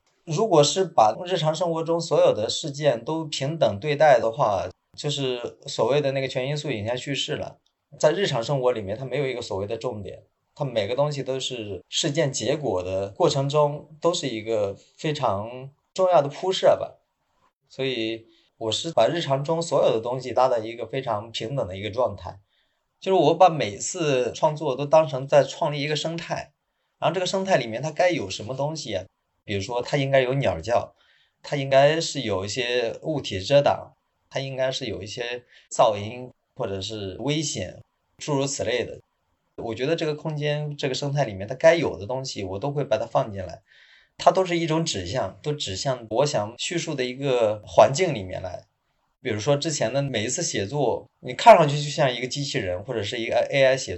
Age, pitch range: 20-39, 120-155 Hz